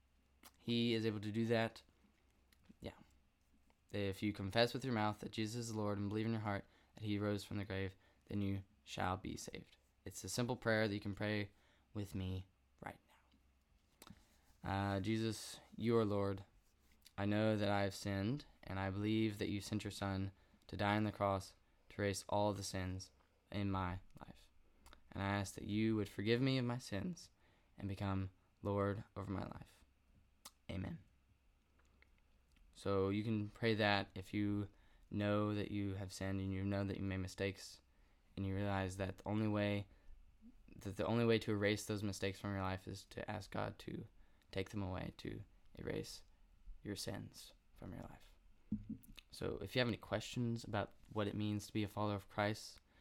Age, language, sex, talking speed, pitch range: 10-29, English, male, 185 wpm, 95-105 Hz